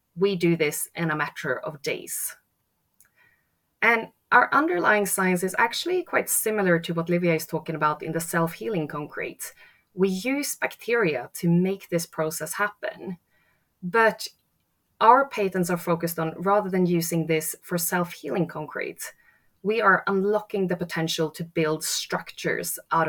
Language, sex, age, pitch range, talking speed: English, female, 20-39, 155-190 Hz, 145 wpm